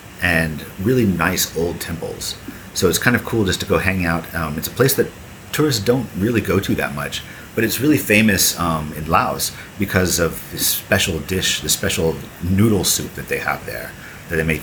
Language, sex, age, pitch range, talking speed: English, male, 40-59, 80-95 Hz, 205 wpm